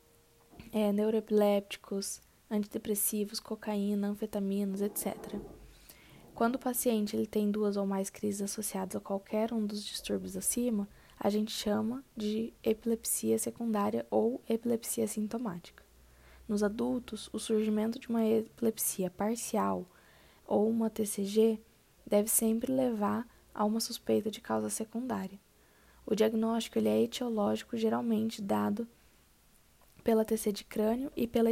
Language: Portuguese